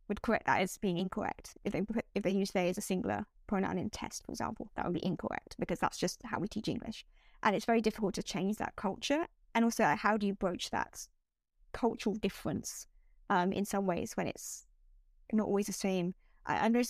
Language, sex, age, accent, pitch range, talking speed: English, female, 20-39, British, 190-225 Hz, 220 wpm